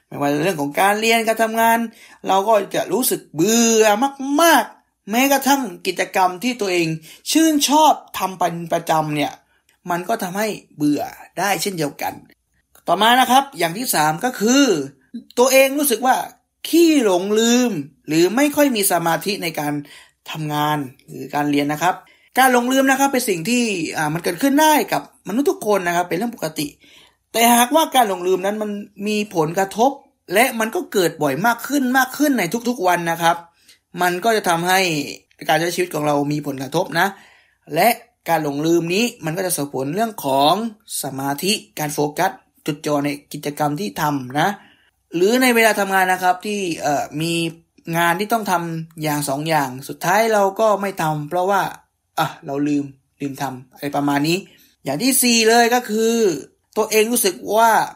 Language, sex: Thai, male